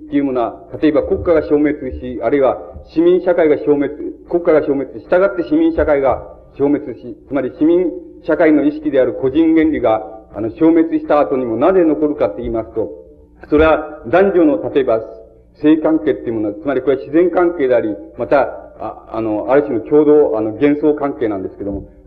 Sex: male